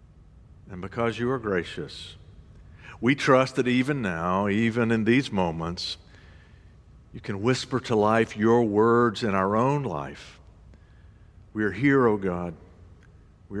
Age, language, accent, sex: 50-69, English, American, male